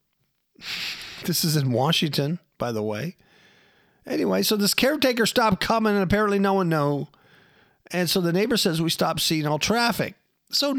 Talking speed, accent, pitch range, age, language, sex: 160 wpm, American, 140-225 Hz, 50-69, English, male